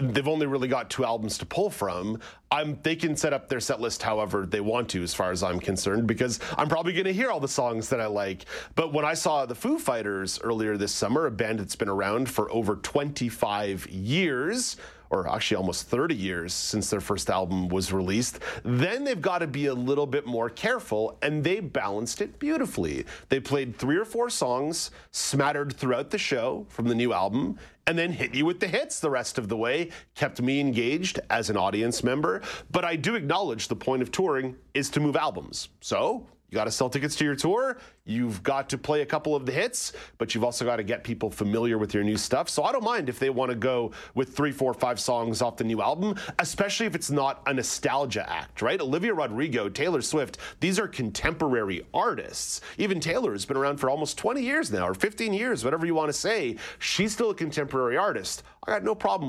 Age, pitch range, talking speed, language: 30-49, 110-150 Hz, 215 wpm, English